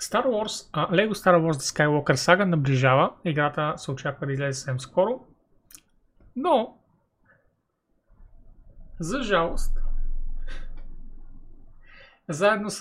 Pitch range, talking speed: 135-165 Hz, 100 wpm